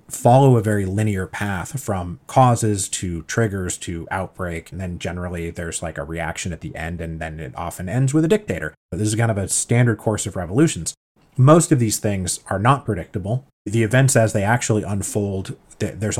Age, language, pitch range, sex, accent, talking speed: 30-49, English, 95-125 Hz, male, American, 195 wpm